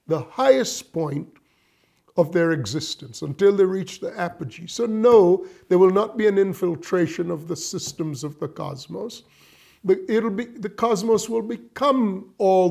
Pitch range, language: 165-215 Hz, English